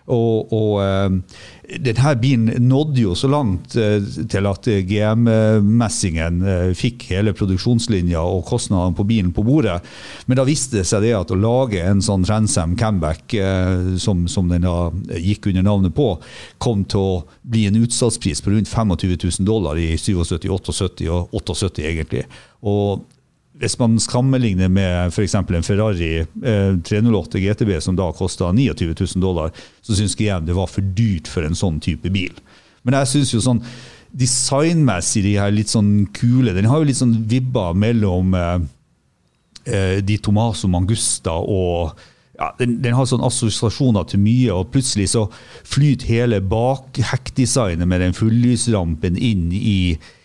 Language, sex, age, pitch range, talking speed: English, male, 50-69, 90-115 Hz, 150 wpm